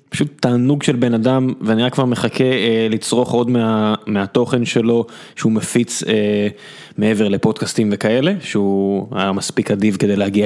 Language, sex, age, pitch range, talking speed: Hebrew, male, 20-39, 115-150 Hz, 155 wpm